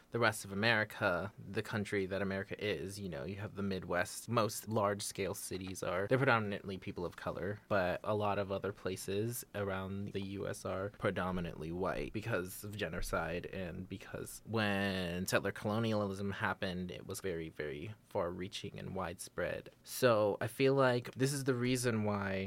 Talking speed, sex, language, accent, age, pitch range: 170 wpm, male, English, American, 20-39, 100-120 Hz